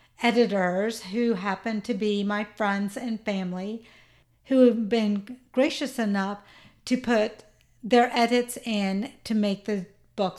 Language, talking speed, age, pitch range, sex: English, 135 wpm, 50-69, 205-255 Hz, female